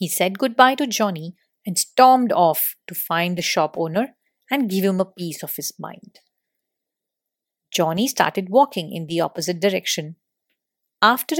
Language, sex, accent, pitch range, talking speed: English, female, Indian, 175-240 Hz, 155 wpm